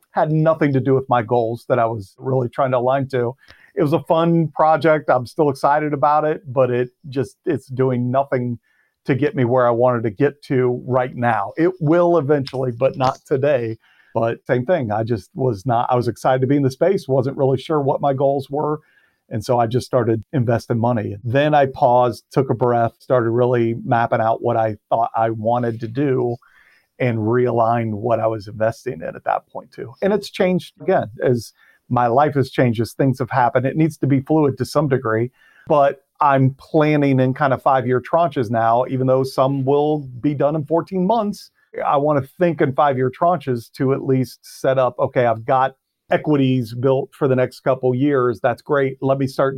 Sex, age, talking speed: male, 40-59, 210 wpm